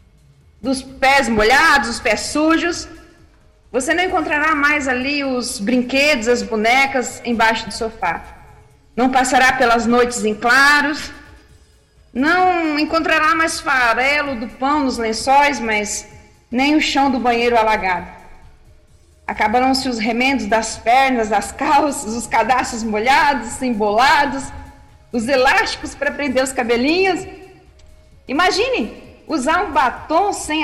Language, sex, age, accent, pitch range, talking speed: Portuguese, female, 40-59, Brazilian, 230-285 Hz, 120 wpm